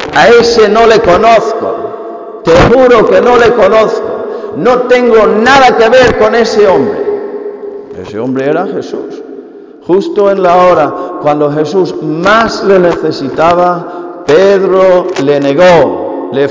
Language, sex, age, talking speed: Spanish, male, 50-69, 130 wpm